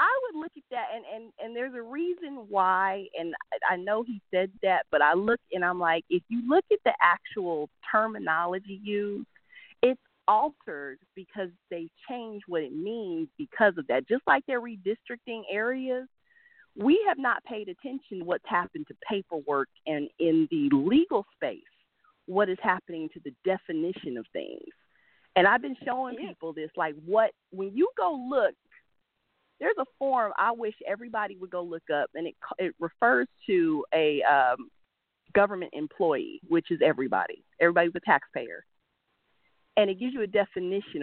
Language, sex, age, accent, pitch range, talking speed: English, female, 40-59, American, 175-285 Hz, 165 wpm